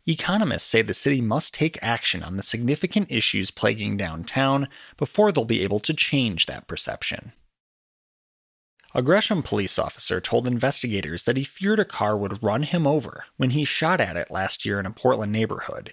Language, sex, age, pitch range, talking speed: English, male, 30-49, 100-145 Hz, 175 wpm